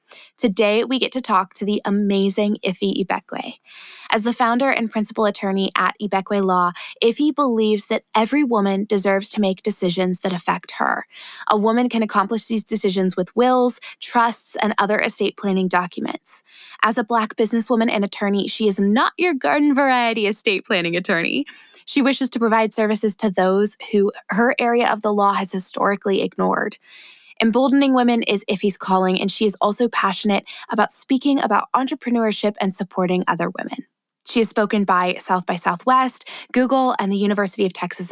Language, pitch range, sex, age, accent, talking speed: English, 195-250 Hz, female, 20-39, American, 170 wpm